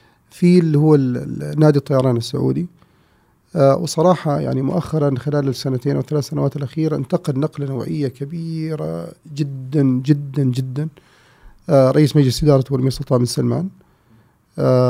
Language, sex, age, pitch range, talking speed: Arabic, male, 40-59, 130-150 Hz, 120 wpm